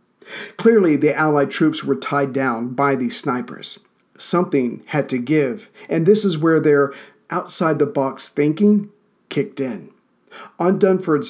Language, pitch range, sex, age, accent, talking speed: English, 140-170 Hz, male, 50-69, American, 135 wpm